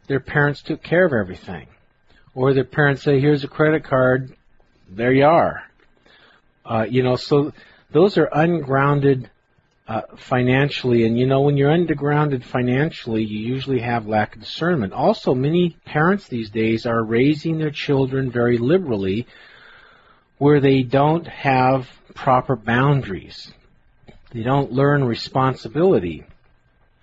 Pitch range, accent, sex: 125-150 Hz, American, male